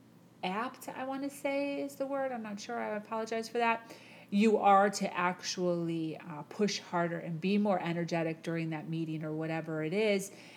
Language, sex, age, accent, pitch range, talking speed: English, female, 30-49, American, 170-200 Hz, 185 wpm